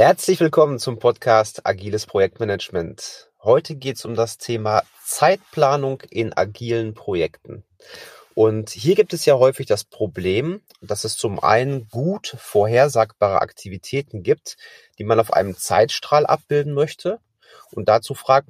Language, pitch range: German, 110-155 Hz